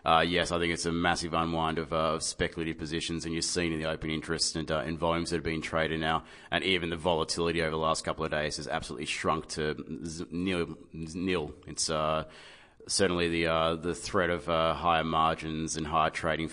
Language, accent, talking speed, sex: English, Australian, 220 wpm, male